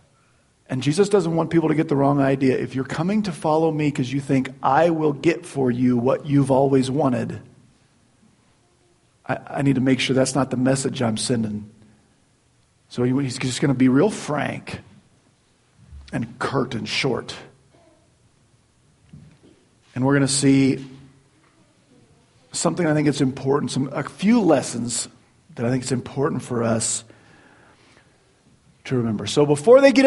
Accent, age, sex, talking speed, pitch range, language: American, 40-59, male, 160 wpm, 130-170 Hz, English